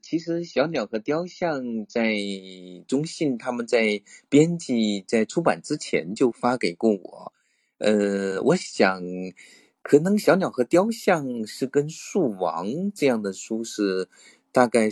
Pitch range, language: 105-150 Hz, Chinese